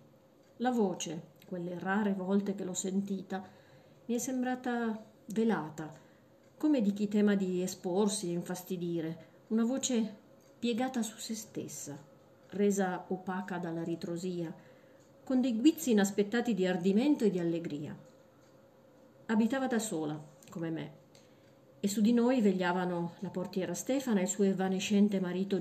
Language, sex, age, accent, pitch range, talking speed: Italian, female, 40-59, native, 175-215 Hz, 135 wpm